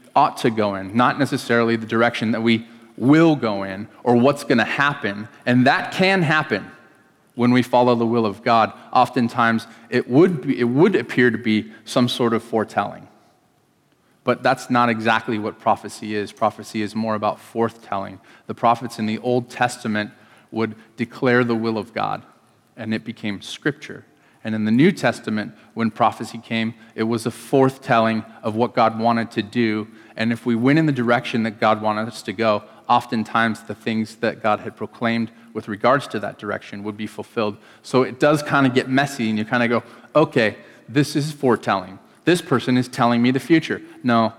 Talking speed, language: 190 wpm, English